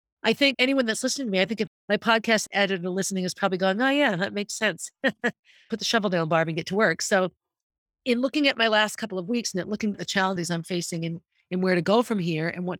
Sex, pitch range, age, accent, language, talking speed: female, 175-225 Hz, 40-59, American, English, 260 wpm